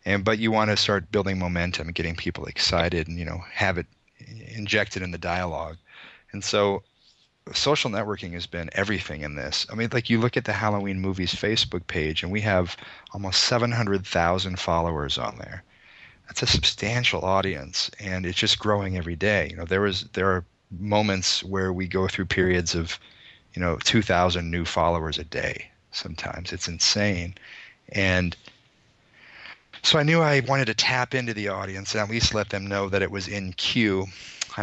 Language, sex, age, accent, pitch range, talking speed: English, male, 30-49, American, 90-105 Hz, 185 wpm